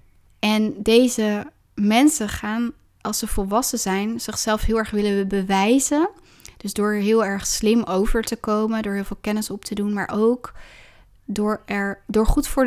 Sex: female